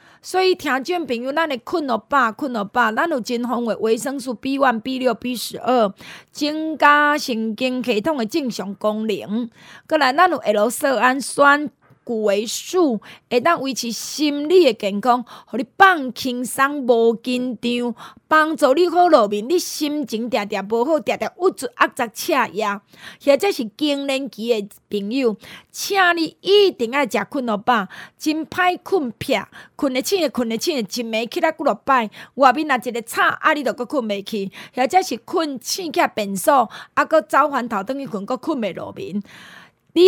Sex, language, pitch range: female, Chinese, 225-310 Hz